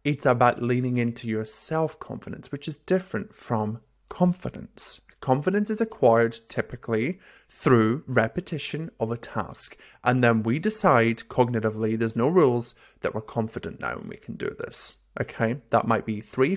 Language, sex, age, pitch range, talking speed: English, male, 30-49, 115-175 Hz, 150 wpm